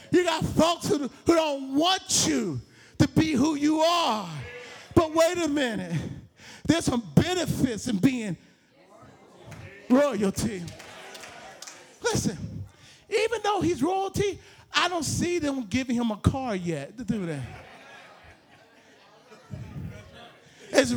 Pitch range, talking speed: 220-320 Hz, 115 wpm